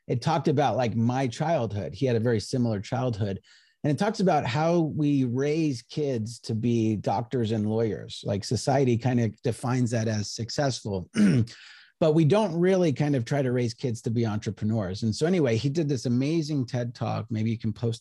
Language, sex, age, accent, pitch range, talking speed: English, male, 30-49, American, 115-145 Hz, 195 wpm